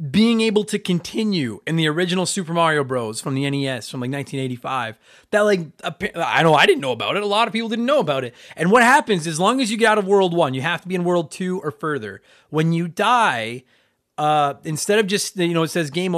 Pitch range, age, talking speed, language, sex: 160-225 Hz, 30-49, 245 wpm, English, male